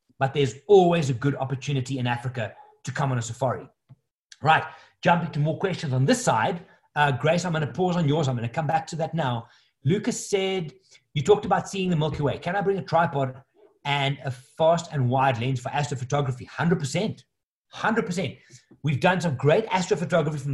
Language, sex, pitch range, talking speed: English, male, 135-175 Hz, 195 wpm